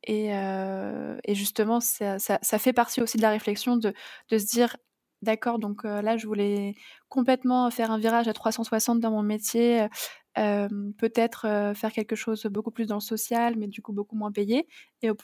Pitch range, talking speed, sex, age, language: 210-235 Hz, 195 wpm, female, 20-39, French